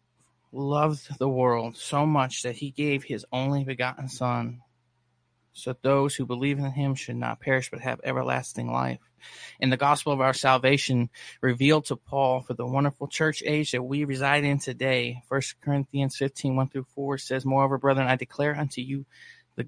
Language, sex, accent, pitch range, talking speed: English, male, American, 130-145 Hz, 180 wpm